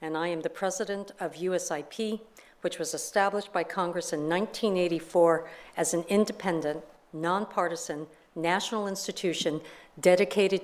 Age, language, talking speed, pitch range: 50-69, English, 120 wpm, 165-200 Hz